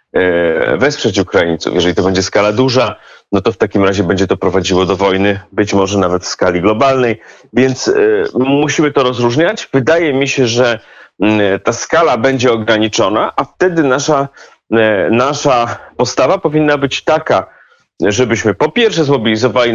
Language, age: Polish, 30-49